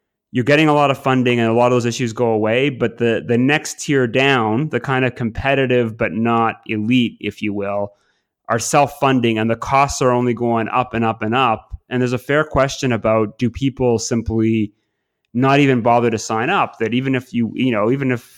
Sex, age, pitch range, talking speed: male, 30-49, 110-130 Hz, 215 wpm